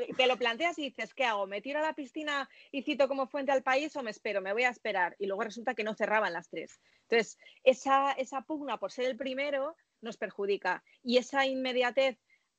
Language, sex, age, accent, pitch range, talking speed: Spanish, female, 30-49, Spanish, 205-260 Hz, 220 wpm